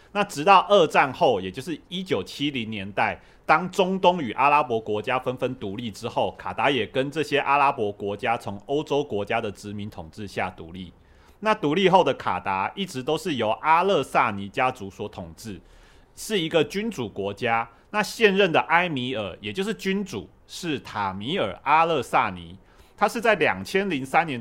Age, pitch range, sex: 30-49, 105-160 Hz, male